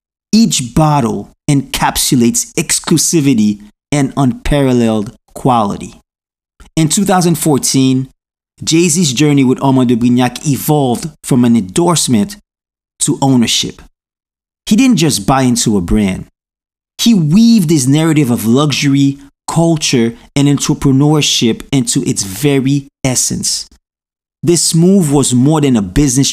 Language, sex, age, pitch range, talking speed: English, male, 30-49, 125-165 Hz, 110 wpm